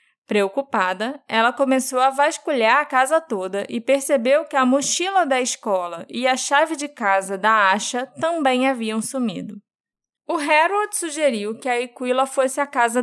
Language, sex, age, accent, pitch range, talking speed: Portuguese, female, 20-39, Brazilian, 220-295 Hz, 155 wpm